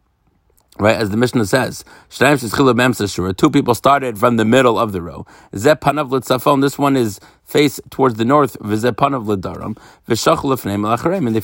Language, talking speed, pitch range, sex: English, 125 wpm, 100-125 Hz, male